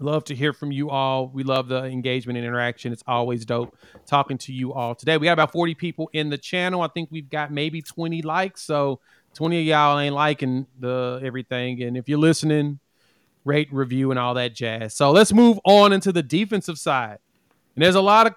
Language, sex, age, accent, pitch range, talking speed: English, male, 30-49, American, 130-180 Hz, 215 wpm